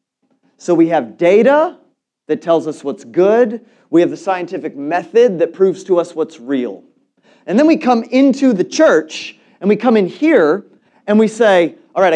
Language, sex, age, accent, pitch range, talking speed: English, male, 30-49, American, 195-265 Hz, 185 wpm